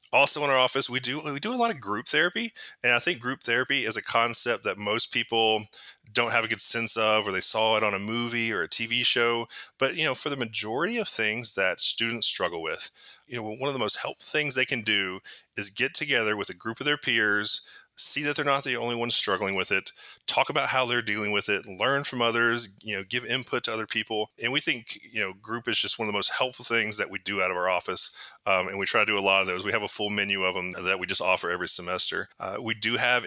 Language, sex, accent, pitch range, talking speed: English, male, American, 105-130 Hz, 265 wpm